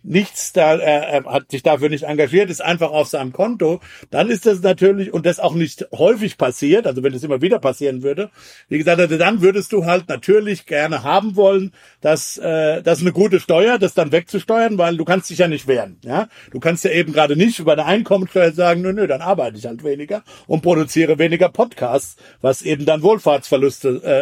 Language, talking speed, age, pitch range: German, 210 wpm, 60-79, 145-185 Hz